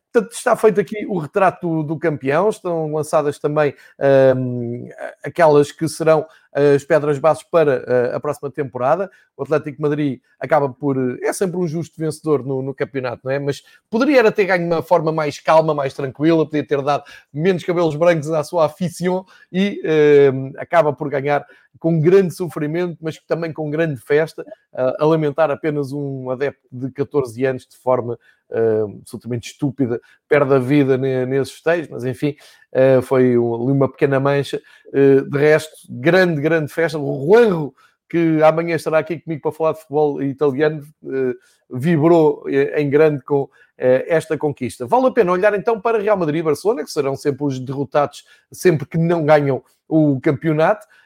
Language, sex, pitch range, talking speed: Portuguese, male, 140-165 Hz, 160 wpm